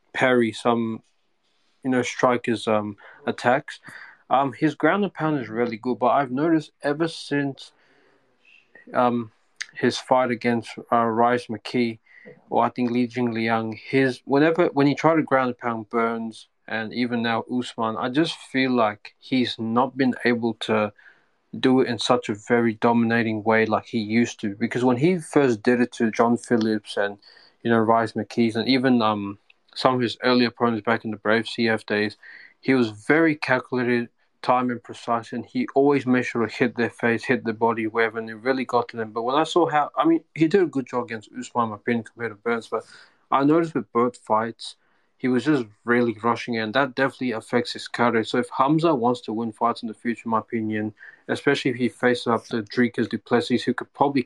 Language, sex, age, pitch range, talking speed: English, male, 20-39, 115-130 Hz, 200 wpm